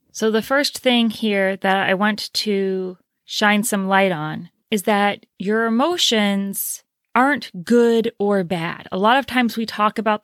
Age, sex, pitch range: 30-49, female, 190-220 Hz